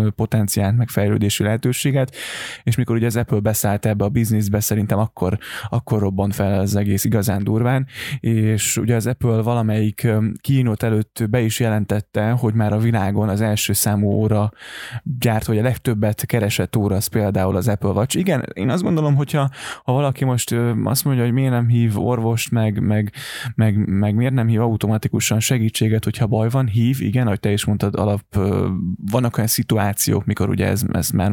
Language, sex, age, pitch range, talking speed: Hungarian, male, 20-39, 105-120 Hz, 175 wpm